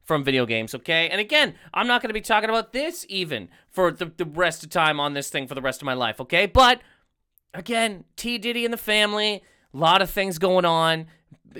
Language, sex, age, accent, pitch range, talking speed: English, male, 30-49, American, 170-255 Hz, 220 wpm